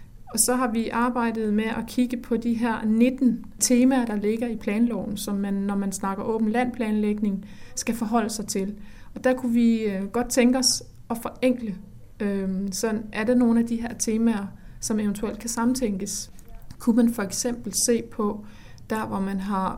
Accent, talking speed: native, 180 wpm